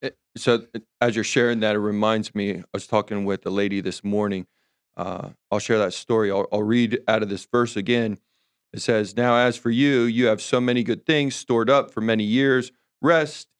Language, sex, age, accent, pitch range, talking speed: English, male, 30-49, American, 110-135 Hz, 205 wpm